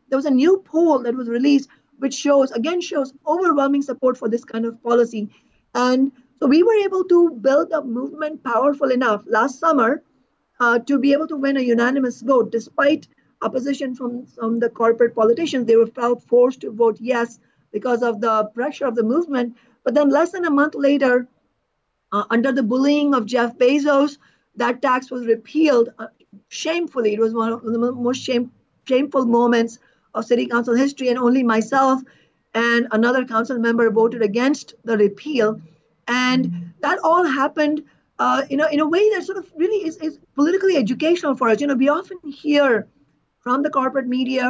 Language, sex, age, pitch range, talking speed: English, female, 50-69, 235-280 Hz, 180 wpm